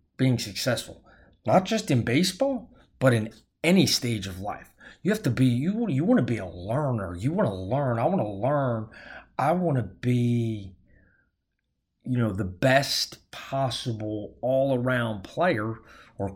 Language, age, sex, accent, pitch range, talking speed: English, 30-49, male, American, 120-165 Hz, 155 wpm